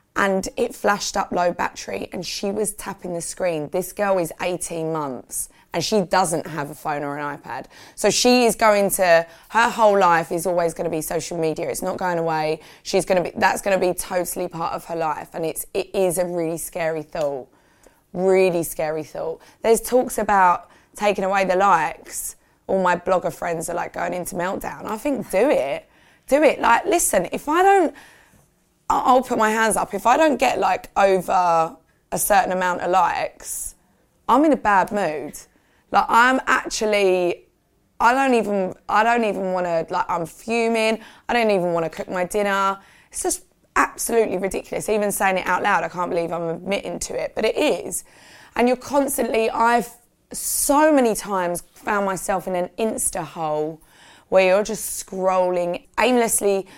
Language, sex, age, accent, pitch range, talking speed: English, female, 20-39, British, 175-225 Hz, 185 wpm